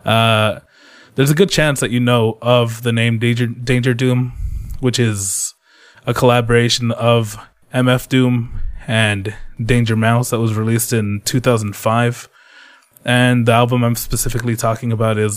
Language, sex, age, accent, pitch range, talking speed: English, male, 20-39, American, 110-135 Hz, 145 wpm